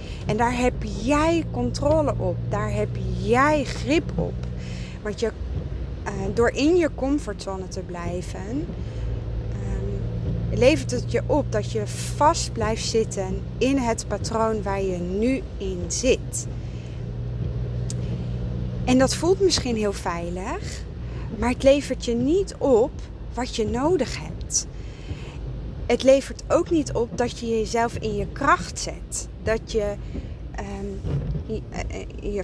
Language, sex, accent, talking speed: Dutch, female, Dutch, 125 wpm